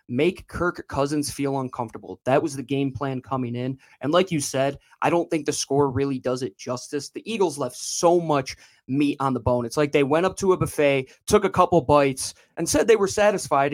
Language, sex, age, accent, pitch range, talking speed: English, male, 20-39, American, 135-180 Hz, 225 wpm